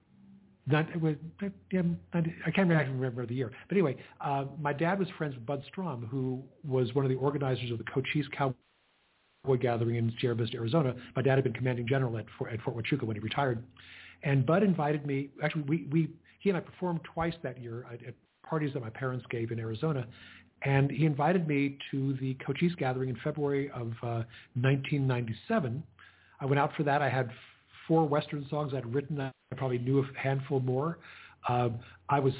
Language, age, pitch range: English, 50-69, 125-155 Hz